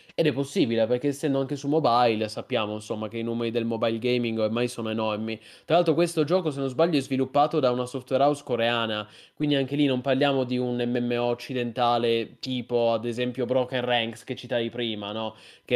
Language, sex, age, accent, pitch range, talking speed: Italian, male, 20-39, native, 120-140 Hz, 200 wpm